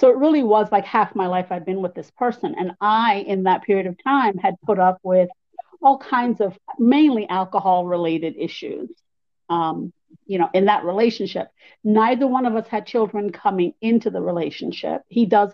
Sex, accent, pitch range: female, American, 185-230 Hz